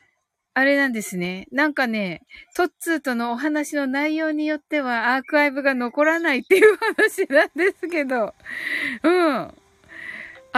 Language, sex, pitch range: Japanese, female, 255-380 Hz